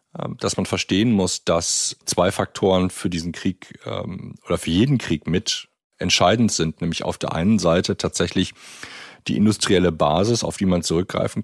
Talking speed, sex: 155 wpm, male